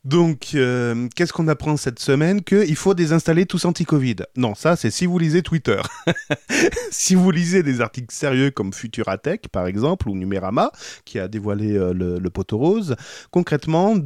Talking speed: 170 wpm